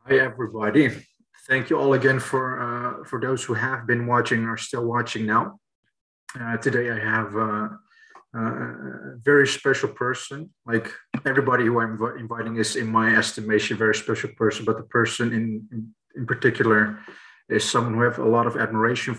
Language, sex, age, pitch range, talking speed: English, male, 30-49, 110-125 Hz, 185 wpm